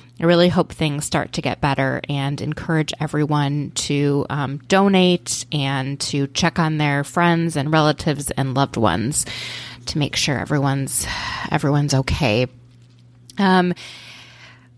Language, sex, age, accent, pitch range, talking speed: English, female, 20-39, American, 140-170 Hz, 130 wpm